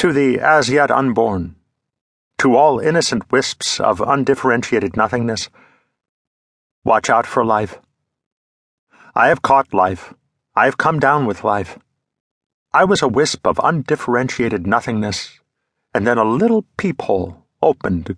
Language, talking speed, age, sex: English, 130 wpm, 50-69, male